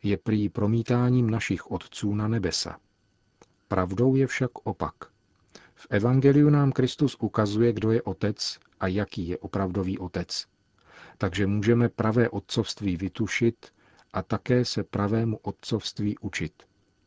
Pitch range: 95-115 Hz